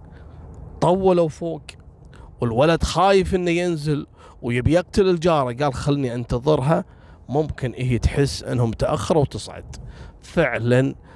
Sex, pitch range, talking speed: male, 110-145 Hz, 95 wpm